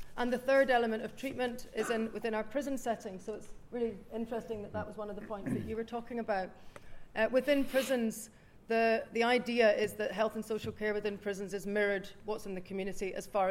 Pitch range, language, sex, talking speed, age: 200-230 Hz, English, female, 220 wpm, 40-59